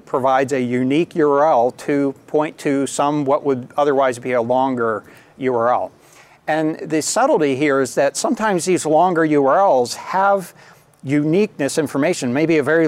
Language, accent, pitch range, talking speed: English, American, 130-160 Hz, 145 wpm